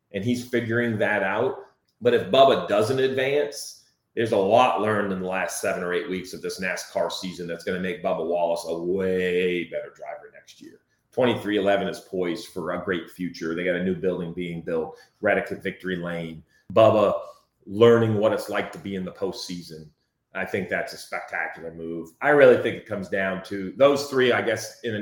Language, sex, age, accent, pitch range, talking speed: English, male, 30-49, American, 90-115 Hz, 205 wpm